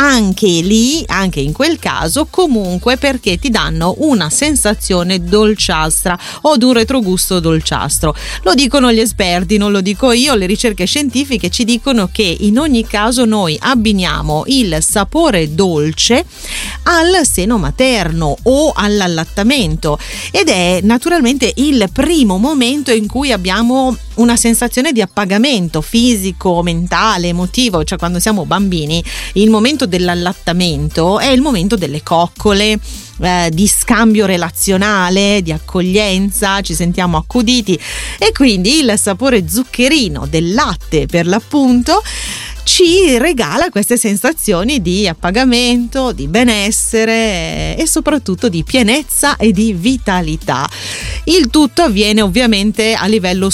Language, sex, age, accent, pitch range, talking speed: Italian, female, 30-49, native, 180-245 Hz, 125 wpm